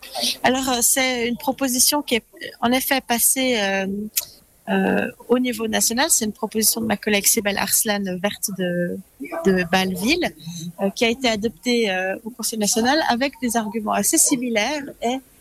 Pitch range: 205-250 Hz